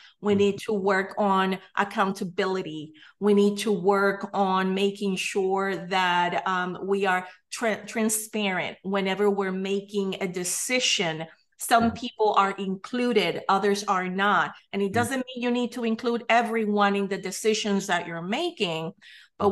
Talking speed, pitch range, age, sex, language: 140 wpm, 195-235 Hz, 30-49, female, English